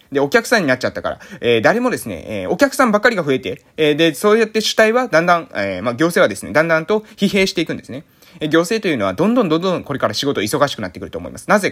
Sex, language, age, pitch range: male, Japanese, 20-39, 155-235 Hz